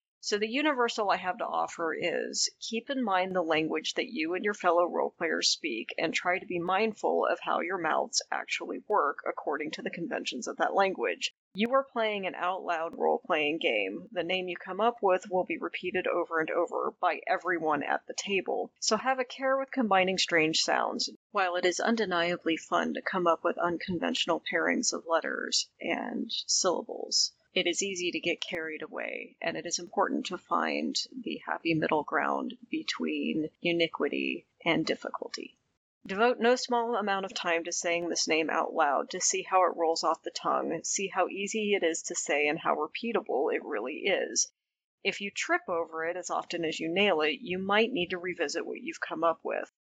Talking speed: 195 wpm